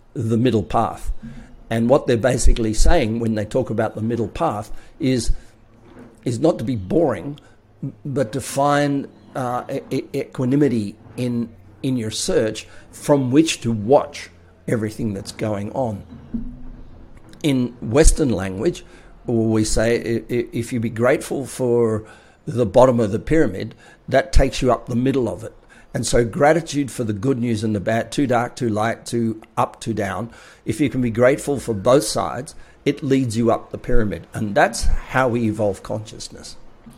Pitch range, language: 110-125 Hz, English